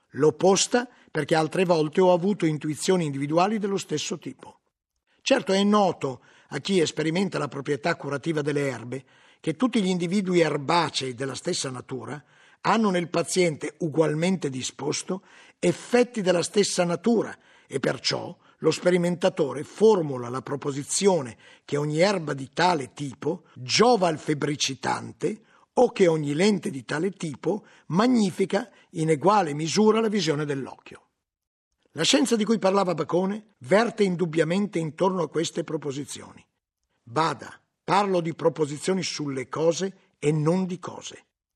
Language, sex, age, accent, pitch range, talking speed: Italian, male, 50-69, native, 150-195 Hz, 130 wpm